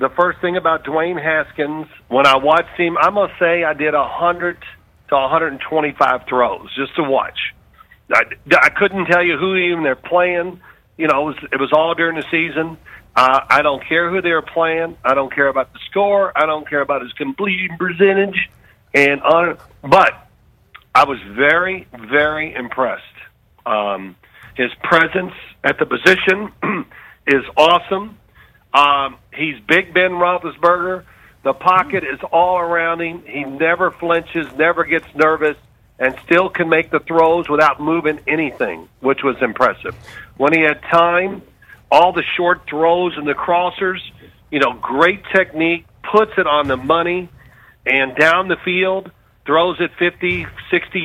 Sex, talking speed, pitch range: male, 160 wpm, 145-175 Hz